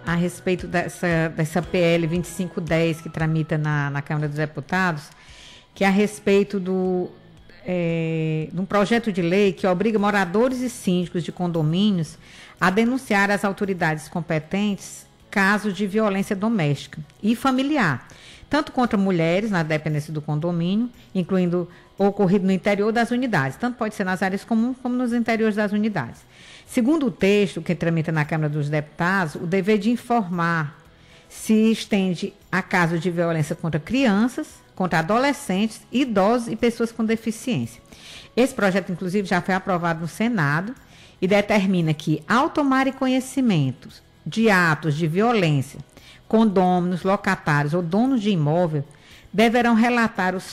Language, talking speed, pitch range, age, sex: Portuguese, 145 wpm, 165-220 Hz, 50-69, female